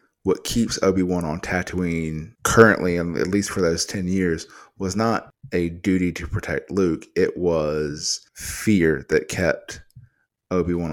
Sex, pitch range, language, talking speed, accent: male, 80-95 Hz, English, 145 wpm, American